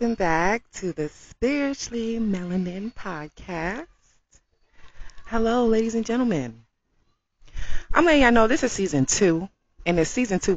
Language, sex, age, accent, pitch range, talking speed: English, female, 30-49, American, 135-205 Hz, 125 wpm